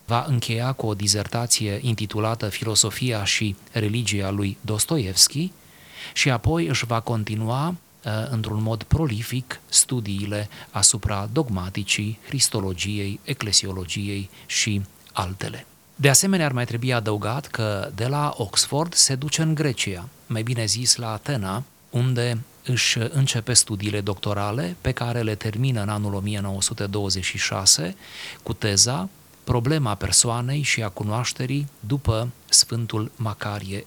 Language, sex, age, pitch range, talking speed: Romanian, male, 30-49, 100-125 Hz, 120 wpm